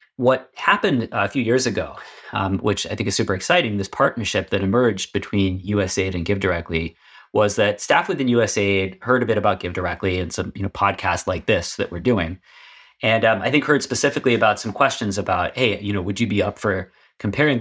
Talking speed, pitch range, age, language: 210 wpm, 95-110 Hz, 30-49, English